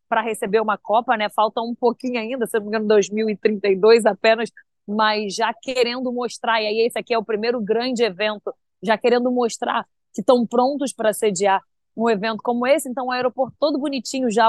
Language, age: Portuguese, 20-39